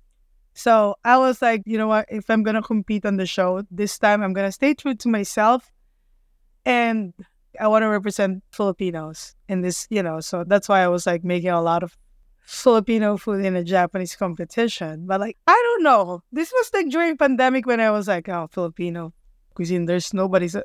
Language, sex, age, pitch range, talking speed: English, female, 20-39, 185-240 Hz, 200 wpm